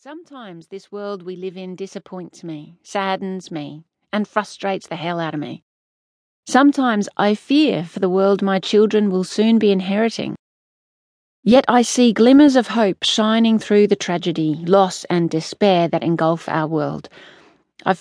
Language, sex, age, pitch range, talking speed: English, female, 40-59, 180-225 Hz, 155 wpm